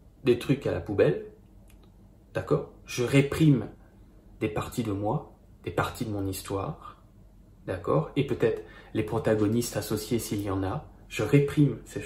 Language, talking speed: French, 150 wpm